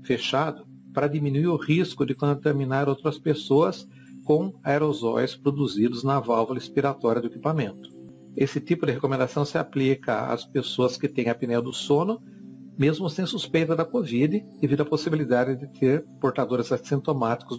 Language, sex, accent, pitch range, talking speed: Portuguese, male, Brazilian, 115-150 Hz, 145 wpm